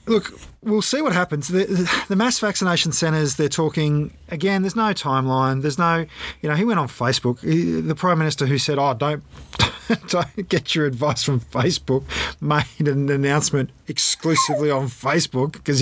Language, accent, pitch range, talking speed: English, Australian, 125-145 Hz, 165 wpm